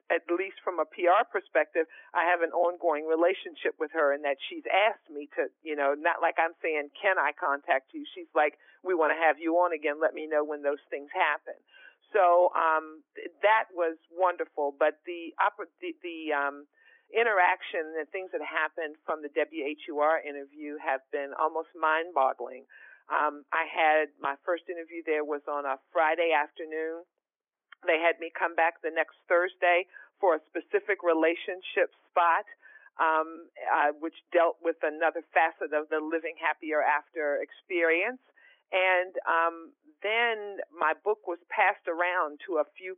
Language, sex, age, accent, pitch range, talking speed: English, female, 50-69, American, 155-185 Hz, 165 wpm